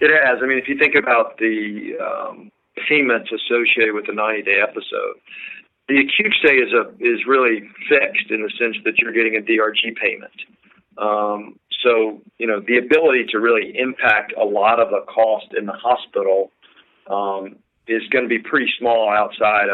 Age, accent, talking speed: 40-59, American, 175 wpm